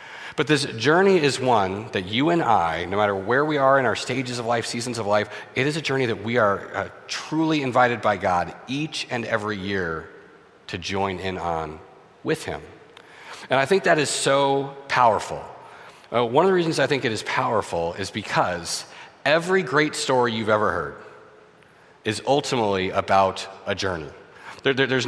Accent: American